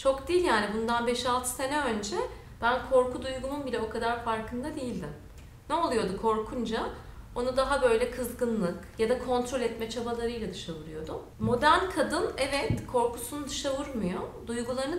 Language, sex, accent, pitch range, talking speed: Turkish, female, native, 220-295 Hz, 145 wpm